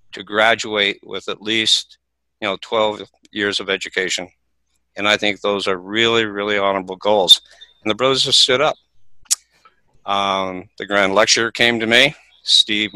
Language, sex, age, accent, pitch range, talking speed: English, male, 50-69, American, 100-115 Hz, 155 wpm